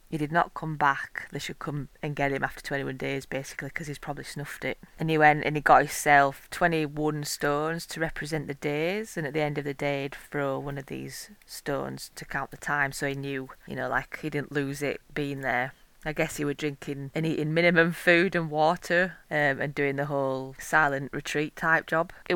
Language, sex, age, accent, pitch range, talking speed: English, female, 20-39, British, 145-170 Hz, 225 wpm